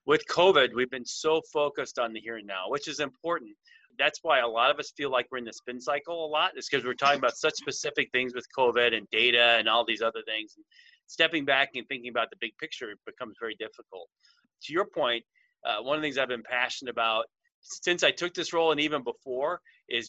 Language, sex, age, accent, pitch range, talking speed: English, male, 30-49, American, 120-165 Hz, 240 wpm